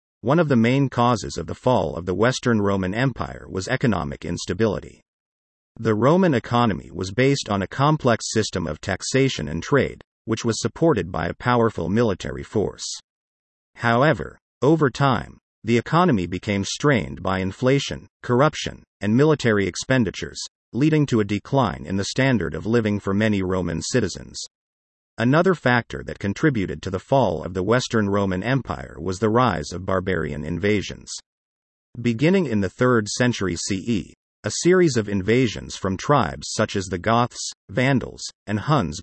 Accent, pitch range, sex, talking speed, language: American, 90-125 Hz, male, 155 wpm, English